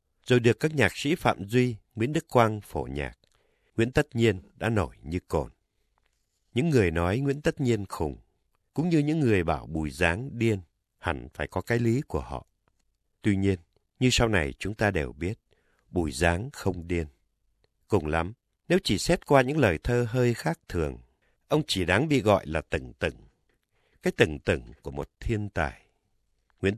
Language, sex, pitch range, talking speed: Vietnamese, male, 85-120 Hz, 185 wpm